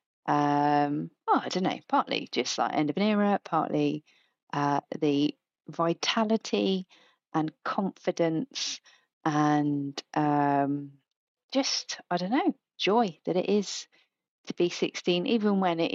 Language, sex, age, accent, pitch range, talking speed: English, female, 30-49, British, 150-205 Hz, 125 wpm